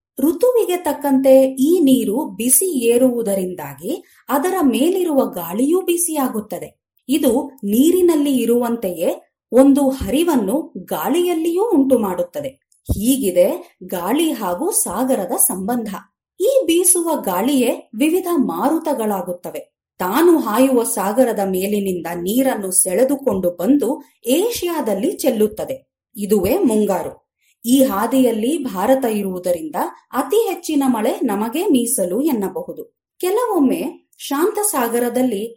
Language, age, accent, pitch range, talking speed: Kannada, 30-49, native, 220-310 Hz, 85 wpm